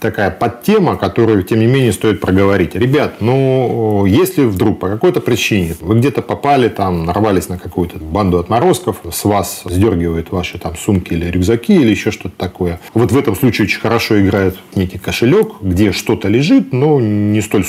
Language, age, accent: Russian, 40-59, native